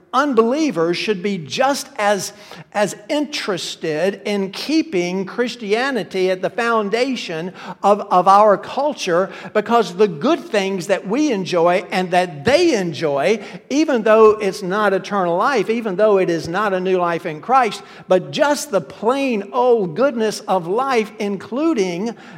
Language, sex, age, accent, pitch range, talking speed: English, male, 60-79, American, 170-225 Hz, 140 wpm